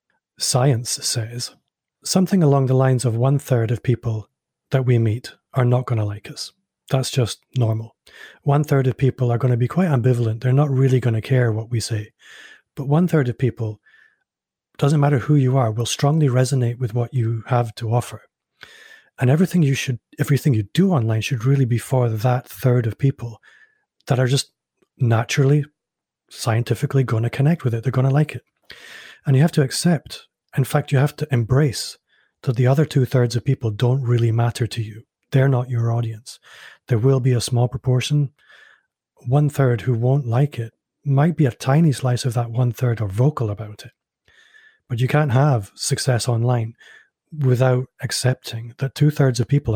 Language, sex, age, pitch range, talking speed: English, male, 30-49, 120-140 Hz, 185 wpm